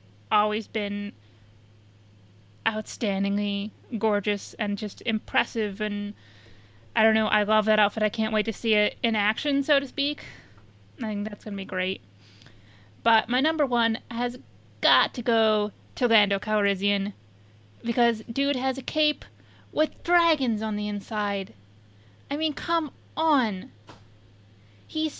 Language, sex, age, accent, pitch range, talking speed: English, female, 20-39, American, 190-235 Hz, 140 wpm